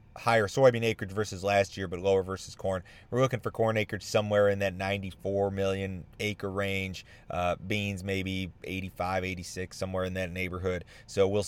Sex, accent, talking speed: male, American, 175 wpm